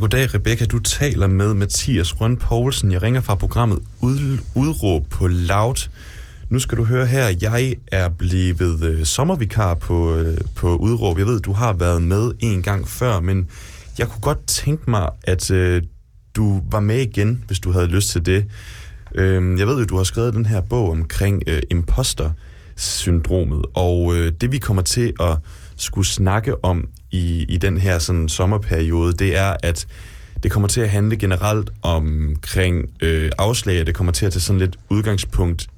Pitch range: 85-105 Hz